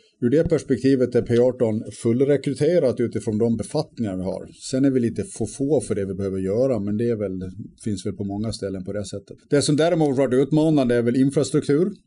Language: Swedish